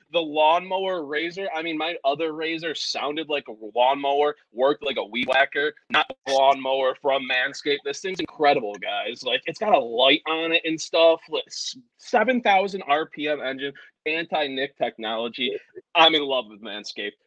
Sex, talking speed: male, 160 wpm